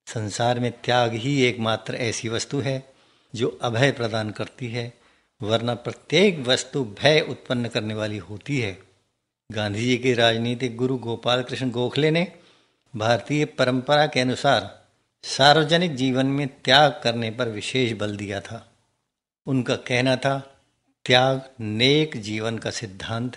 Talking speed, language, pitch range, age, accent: 135 wpm, Hindi, 110-135 Hz, 60-79, native